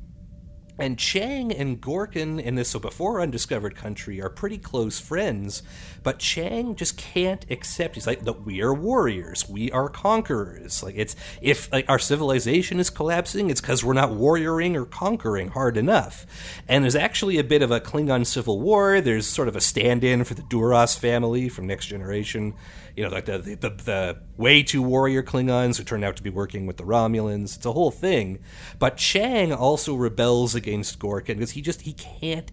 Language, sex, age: English, male, 40-59